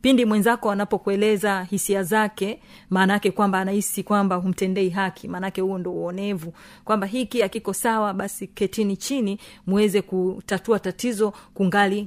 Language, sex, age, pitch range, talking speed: Swahili, female, 40-59, 190-220 Hz, 125 wpm